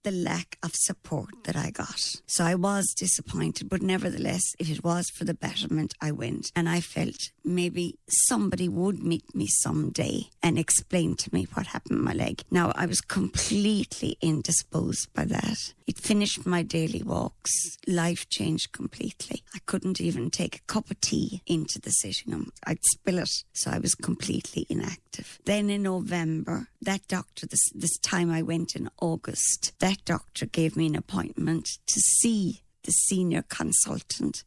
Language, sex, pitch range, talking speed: English, female, 165-195 Hz, 170 wpm